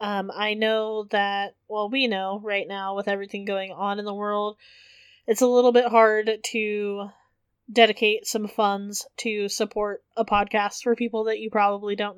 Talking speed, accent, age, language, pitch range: 170 wpm, American, 20-39, English, 210-240 Hz